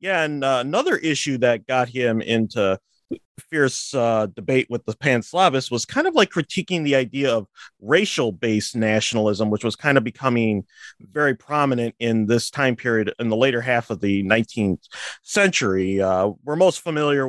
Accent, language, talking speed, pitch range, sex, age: American, English, 175 wpm, 110-140 Hz, male, 30-49